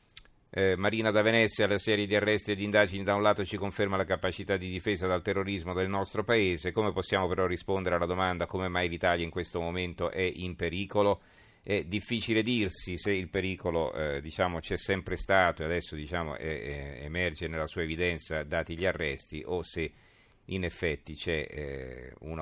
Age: 40-59